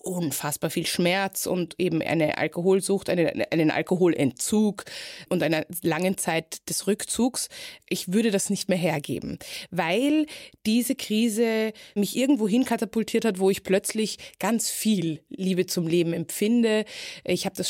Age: 20-39